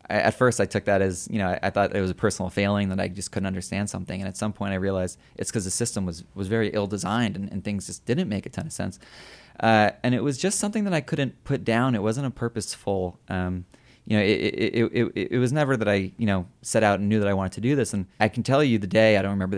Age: 20-39